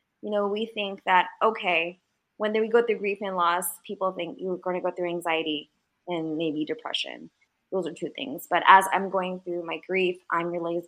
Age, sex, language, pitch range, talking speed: 20-39, female, English, 185-240 Hz, 205 wpm